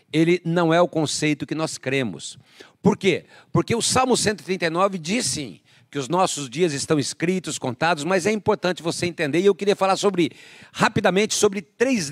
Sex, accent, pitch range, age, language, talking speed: male, Brazilian, 155-200 Hz, 50-69, Portuguese, 180 wpm